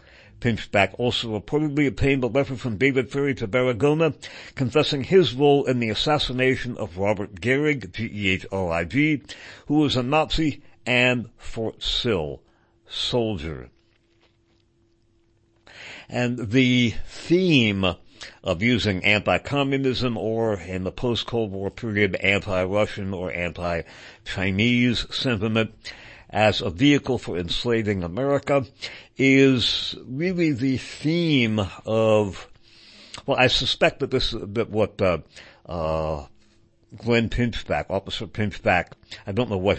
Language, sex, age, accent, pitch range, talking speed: English, male, 60-79, American, 95-130 Hz, 115 wpm